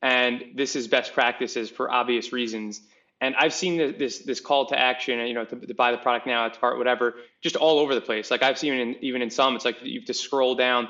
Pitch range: 120-150 Hz